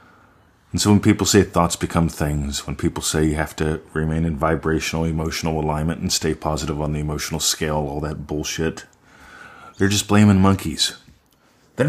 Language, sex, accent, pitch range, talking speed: English, male, American, 80-110 Hz, 170 wpm